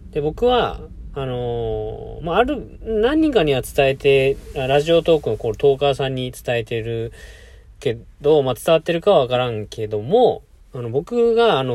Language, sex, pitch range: Japanese, male, 120-190 Hz